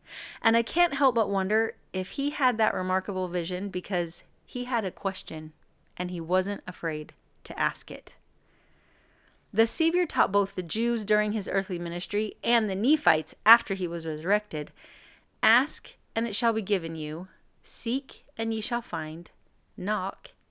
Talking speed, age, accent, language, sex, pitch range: 160 wpm, 30-49, American, English, female, 180-230 Hz